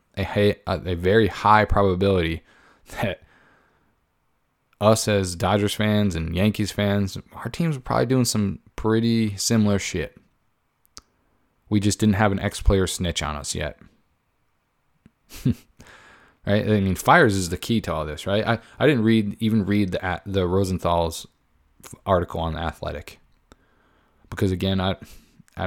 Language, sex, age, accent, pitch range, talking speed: English, male, 20-39, American, 90-105 Hz, 145 wpm